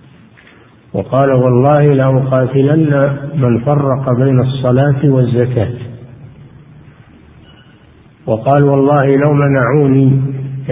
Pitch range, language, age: 130-150 Hz, Arabic, 50-69